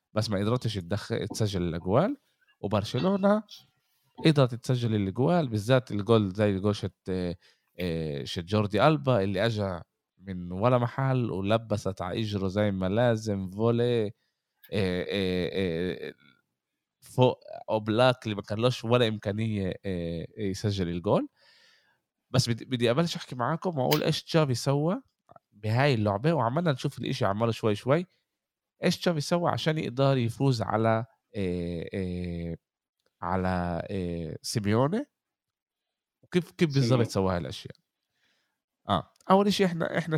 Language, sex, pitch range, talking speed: Arabic, male, 95-140 Hz, 120 wpm